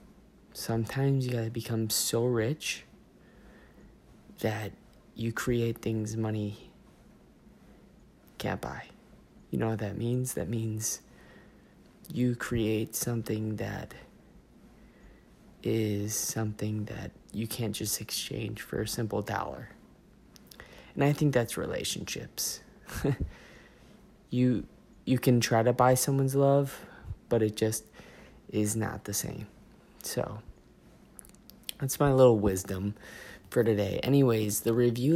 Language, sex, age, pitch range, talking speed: English, male, 20-39, 105-125 Hz, 110 wpm